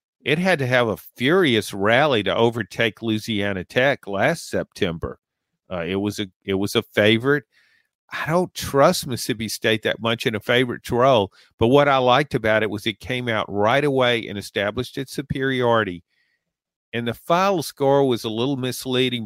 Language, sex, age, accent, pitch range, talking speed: English, male, 50-69, American, 105-135 Hz, 175 wpm